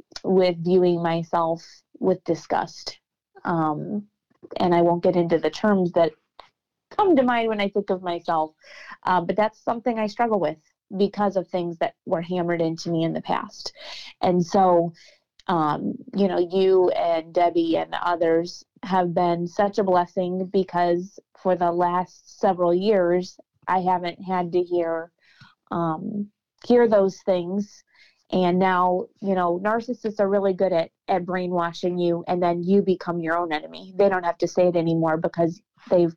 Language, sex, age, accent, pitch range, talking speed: English, female, 30-49, American, 170-200 Hz, 165 wpm